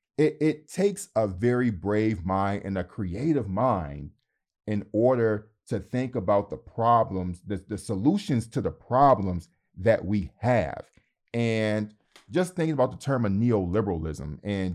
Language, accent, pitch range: English, American, 95-120 Hz